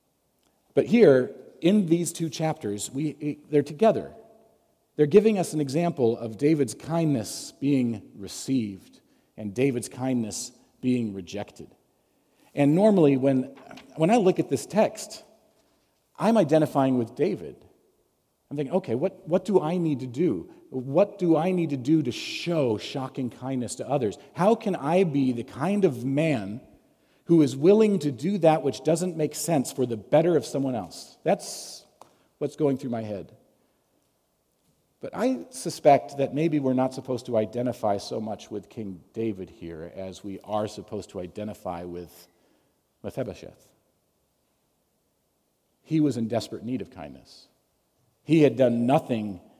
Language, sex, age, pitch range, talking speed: English, male, 40-59, 115-160 Hz, 150 wpm